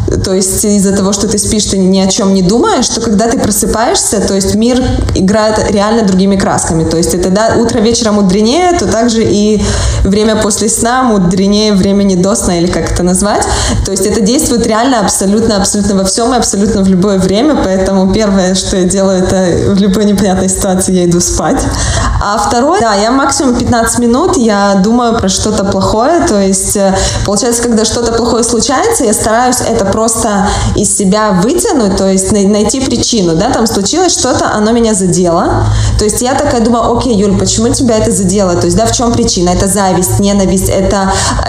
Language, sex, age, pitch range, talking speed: Russian, female, 20-39, 195-230 Hz, 185 wpm